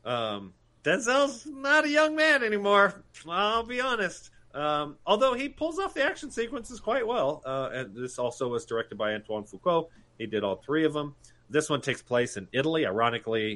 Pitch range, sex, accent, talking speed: 110-160 Hz, male, American, 185 wpm